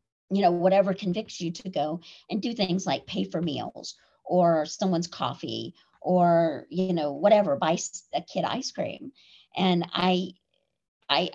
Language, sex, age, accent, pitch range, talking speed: English, female, 50-69, American, 180-260 Hz, 155 wpm